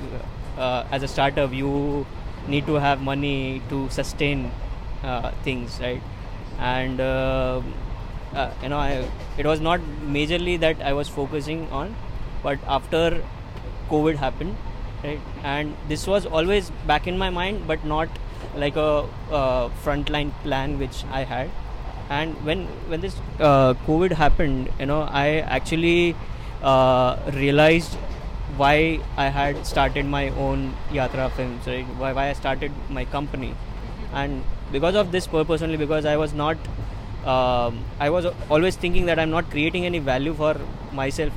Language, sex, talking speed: French, male, 150 wpm